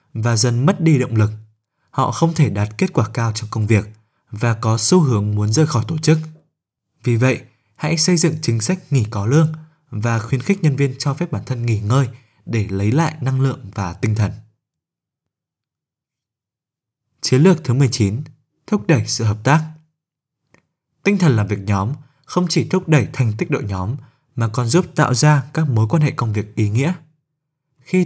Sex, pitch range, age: male, 115-155 Hz, 20-39